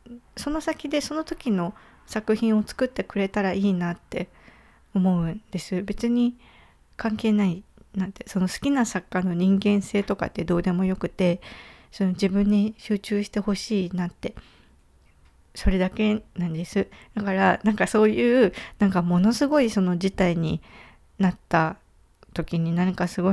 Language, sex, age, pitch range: Japanese, female, 20-39, 180-220 Hz